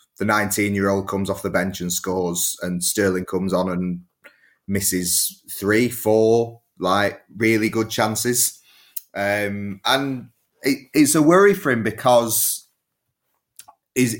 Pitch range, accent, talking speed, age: 95-115 Hz, British, 125 wpm, 30-49